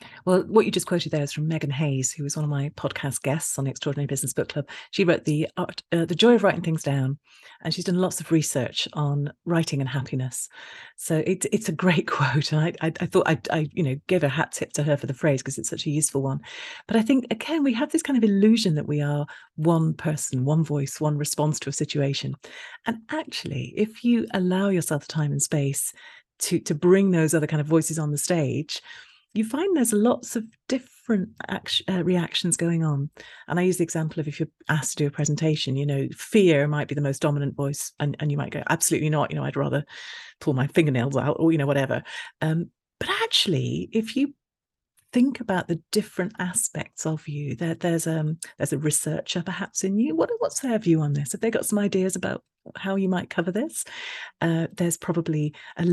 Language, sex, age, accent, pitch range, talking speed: English, female, 40-59, British, 150-190 Hz, 225 wpm